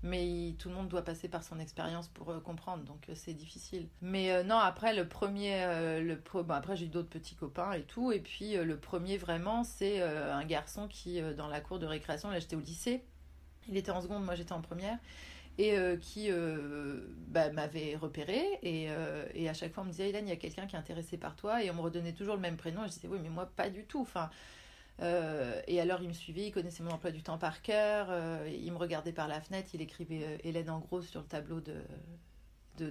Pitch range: 160-200 Hz